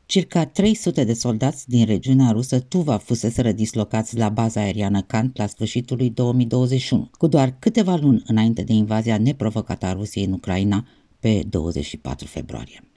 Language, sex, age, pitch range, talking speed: Romanian, female, 50-69, 105-140 Hz, 155 wpm